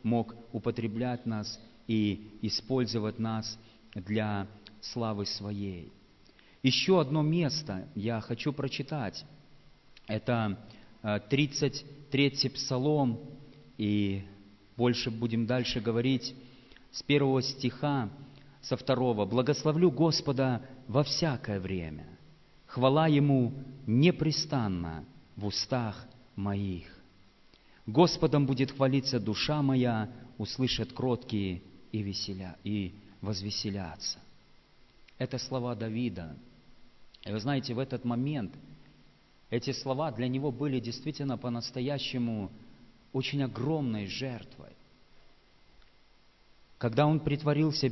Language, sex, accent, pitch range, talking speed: Russian, male, native, 110-140 Hz, 90 wpm